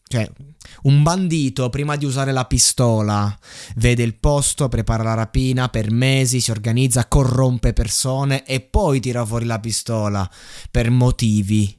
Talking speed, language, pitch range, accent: 145 wpm, Italian, 115-140 Hz, native